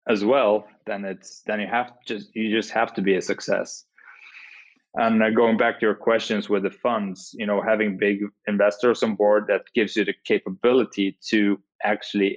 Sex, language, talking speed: male, English, 190 wpm